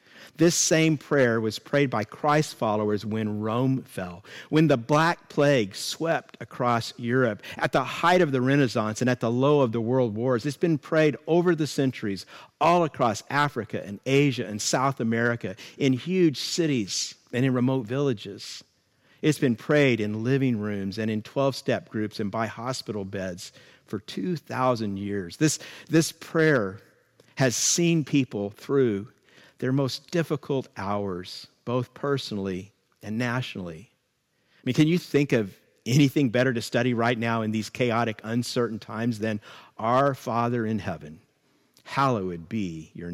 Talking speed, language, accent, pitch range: 155 wpm, English, American, 110-140 Hz